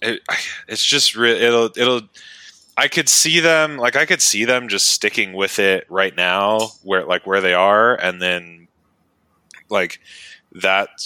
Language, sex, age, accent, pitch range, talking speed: English, male, 20-39, American, 85-105 Hz, 150 wpm